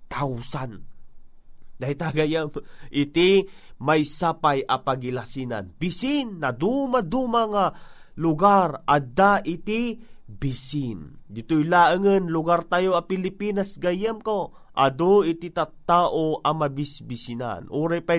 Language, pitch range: Filipino, 150-195 Hz